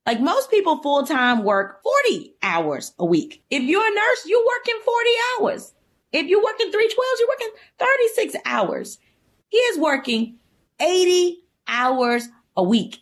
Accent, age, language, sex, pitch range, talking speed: American, 30-49, English, female, 215-345 Hz, 165 wpm